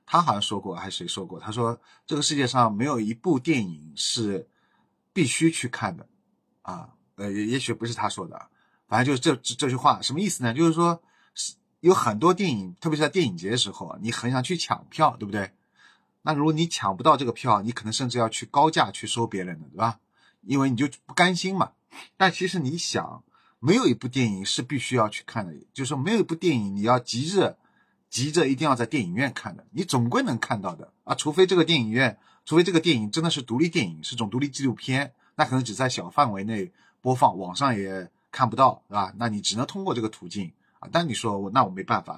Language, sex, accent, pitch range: Chinese, male, native, 115-160 Hz